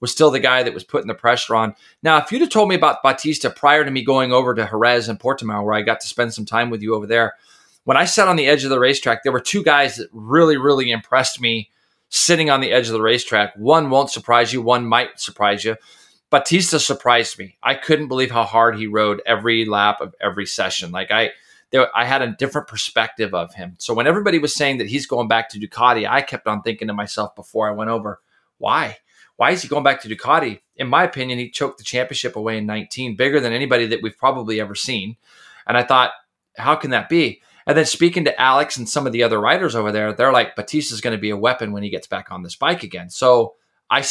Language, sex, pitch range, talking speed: English, male, 110-135 Hz, 245 wpm